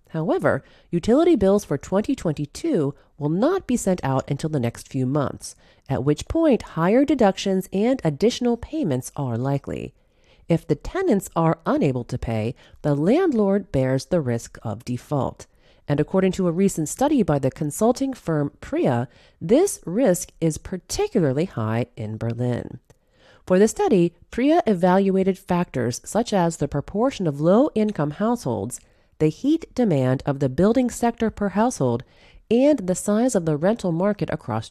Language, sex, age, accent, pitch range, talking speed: English, female, 40-59, American, 140-230 Hz, 150 wpm